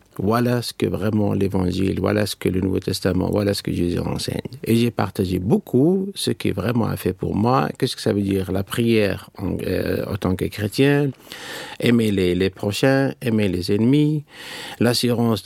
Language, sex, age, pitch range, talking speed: French, male, 50-69, 100-135 Hz, 185 wpm